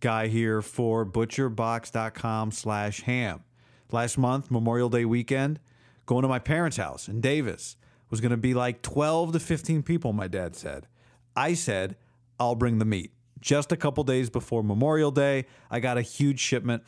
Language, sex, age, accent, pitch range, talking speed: English, male, 40-59, American, 120-150 Hz, 170 wpm